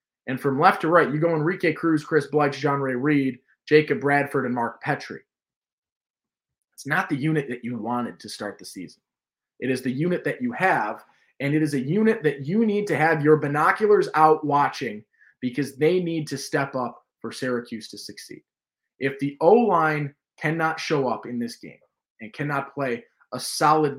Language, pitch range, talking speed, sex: English, 140-170 Hz, 190 wpm, male